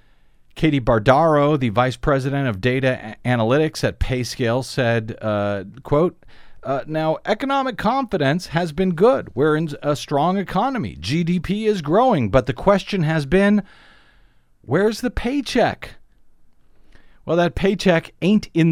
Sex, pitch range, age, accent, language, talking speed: male, 130-175 Hz, 50-69, American, English, 130 wpm